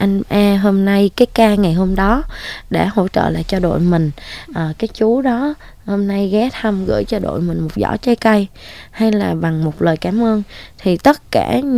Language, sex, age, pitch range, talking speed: Vietnamese, female, 20-39, 175-230 Hz, 210 wpm